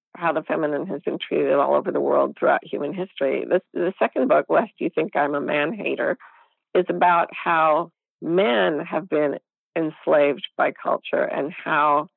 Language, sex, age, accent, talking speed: English, female, 50-69, American, 175 wpm